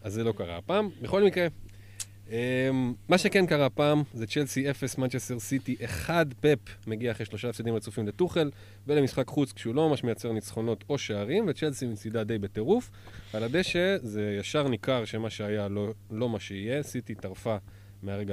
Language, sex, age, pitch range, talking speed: Hebrew, male, 20-39, 100-130 Hz, 170 wpm